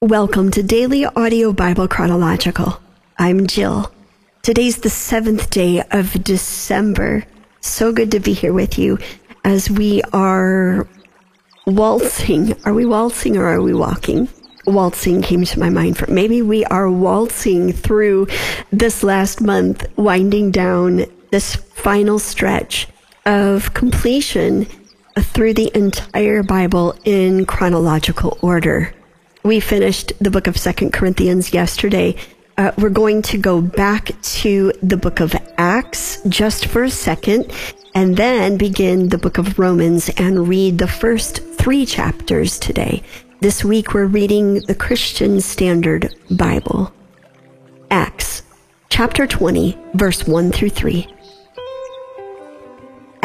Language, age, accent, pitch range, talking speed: English, 50-69, American, 180-215 Hz, 125 wpm